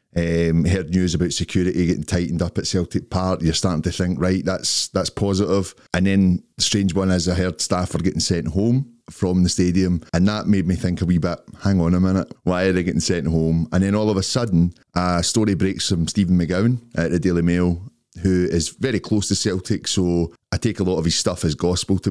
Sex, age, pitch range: male, 30-49, 85-100 Hz